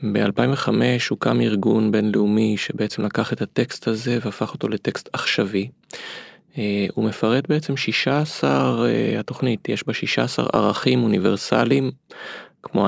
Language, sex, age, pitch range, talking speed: Hebrew, male, 20-39, 105-125 Hz, 110 wpm